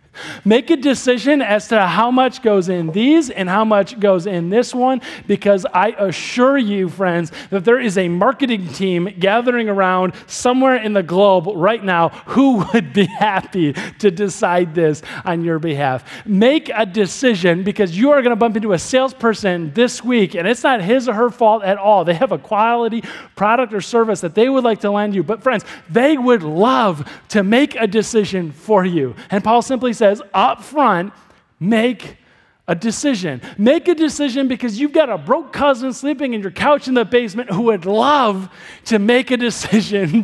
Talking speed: 185 wpm